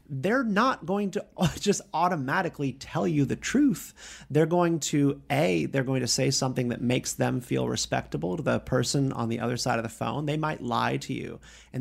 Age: 30-49